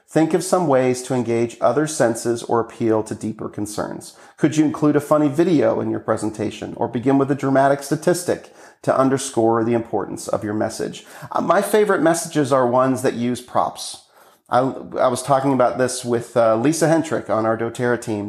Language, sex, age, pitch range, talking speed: English, male, 40-59, 115-150 Hz, 190 wpm